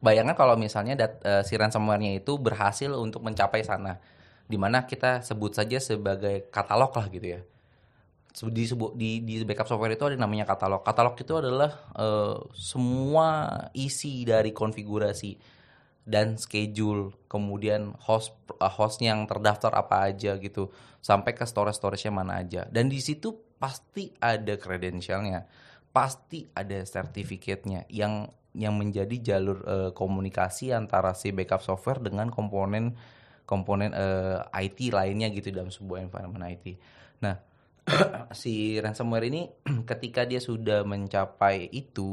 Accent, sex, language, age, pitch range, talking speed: native, male, Indonesian, 20-39, 100-120 Hz, 135 wpm